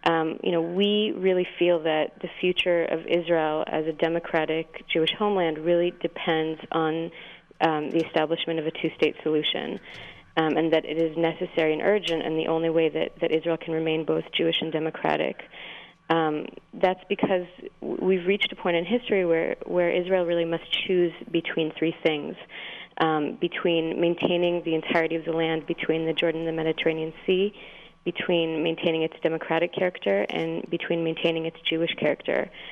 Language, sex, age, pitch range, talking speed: English, female, 30-49, 160-175 Hz, 165 wpm